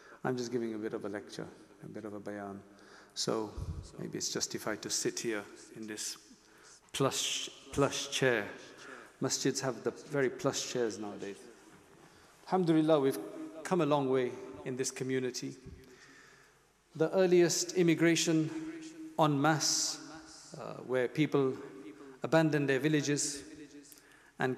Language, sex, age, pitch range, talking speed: English, male, 40-59, 125-155 Hz, 130 wpm